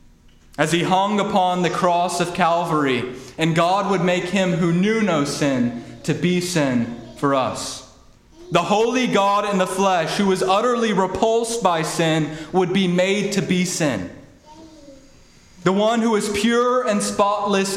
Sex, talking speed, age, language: male, 160 wpm, 30-49, English